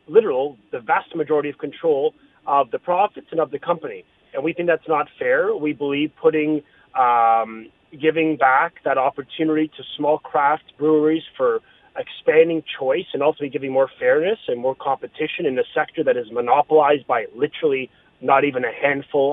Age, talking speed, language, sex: 30-49, 170 wpm, English, male